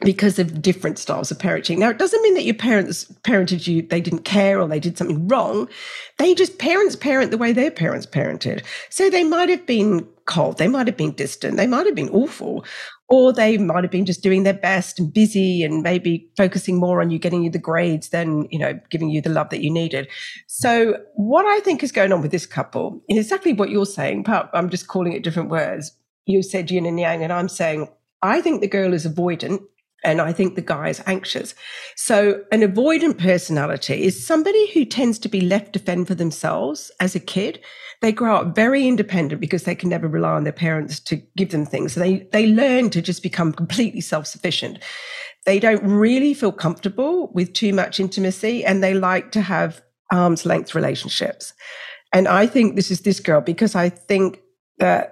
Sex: female